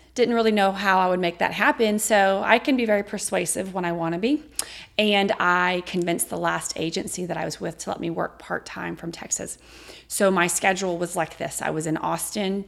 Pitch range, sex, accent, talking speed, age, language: 165-205 Hz, female, American, 225 wpm, 30-49, English